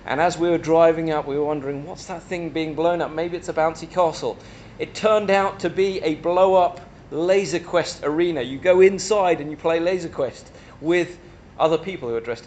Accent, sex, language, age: British, male, English, 30-49